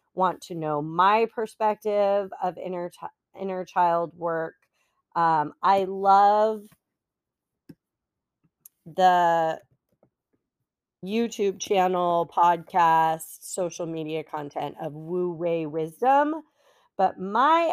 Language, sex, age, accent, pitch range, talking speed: English, female, 40-59, American, 160-205 Hz, 90 wpm